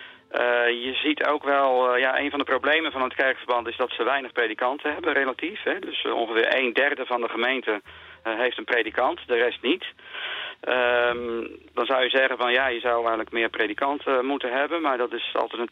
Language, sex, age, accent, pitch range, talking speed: Dutch, male, 50-69, Dutch, 115-140 Hz, 215 wpm